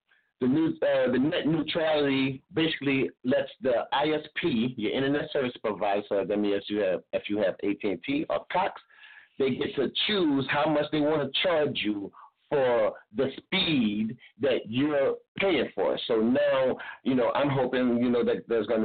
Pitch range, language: 115-165 Hz, English